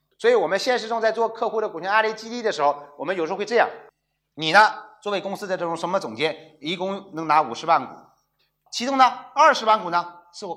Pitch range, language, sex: 160-245 Hz, Chinese, male